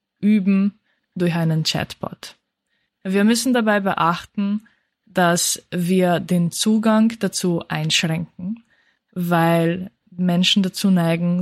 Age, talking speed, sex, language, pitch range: 20-39, 95 wpm, female, German, 165-195 Hz